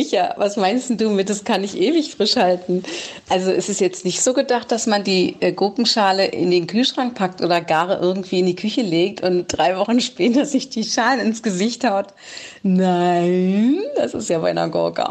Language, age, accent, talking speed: German, 30-49, German, 195 wpm